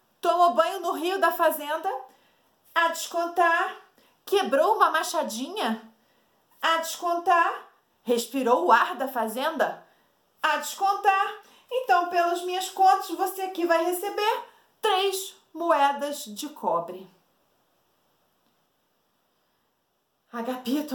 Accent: Brazilian